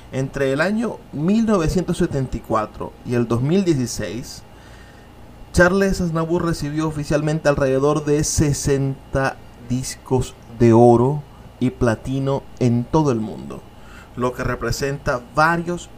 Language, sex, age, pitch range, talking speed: Spanish, male, 30-49, 115-145 Hz, 100 wpm